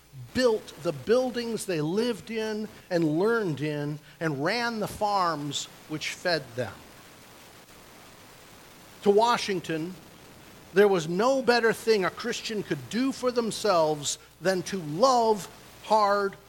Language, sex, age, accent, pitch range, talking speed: English, male, 50-69, American, 175-240 Hz, 120 wpm